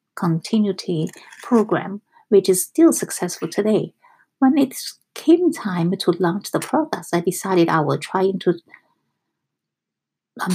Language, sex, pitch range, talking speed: English, female, 175-220 Hz, 125 wpm